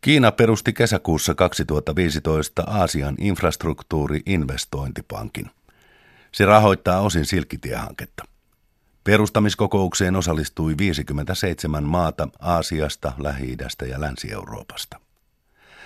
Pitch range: 75-95 Hz